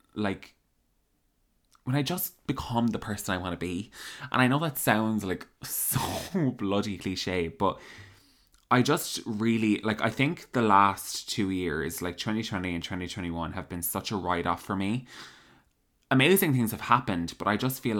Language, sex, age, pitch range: English, male, 20-39, 95-120 Hz